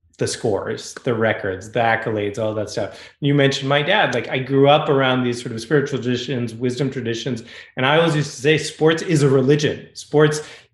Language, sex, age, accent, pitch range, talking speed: English, male, 30-49, American, 125-150 Hz, 200 wpm